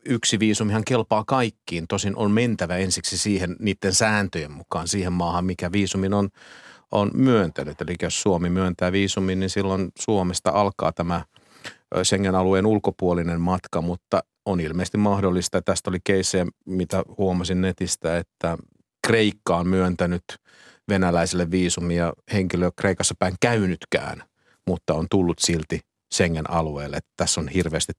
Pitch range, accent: 85-100 Hz, native